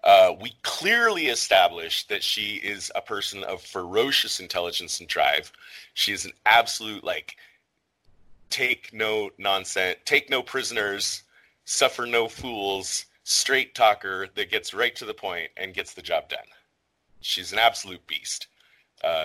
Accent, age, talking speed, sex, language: American, 30-49, 145 wpm, male, English